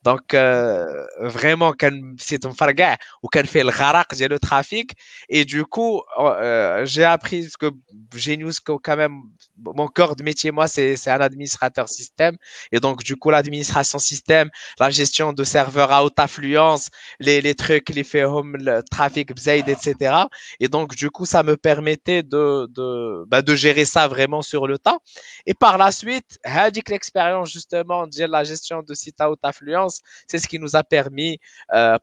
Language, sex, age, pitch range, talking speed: Arabic, male, 20-39, 125-150 Hz, 185 wpm